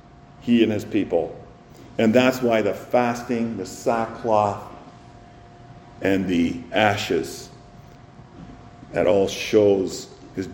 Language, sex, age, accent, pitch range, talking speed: English, male, 50-69, American, 115-150 Hz, 95 wpm